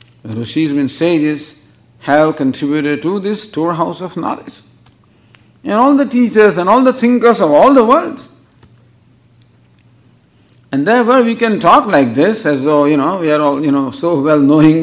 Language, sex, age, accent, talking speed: English, male, 50-69, Indian, 160 wpm